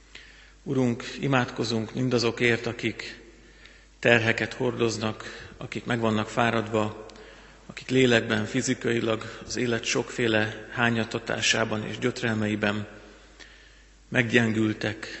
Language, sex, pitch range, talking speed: Hungarian, male, 110-120 Hz, 80 wpm